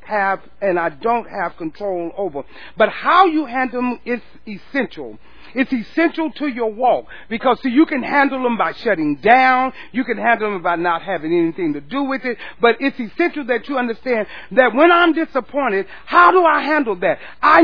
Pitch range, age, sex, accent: 200-275 Hz, 40-59, male, American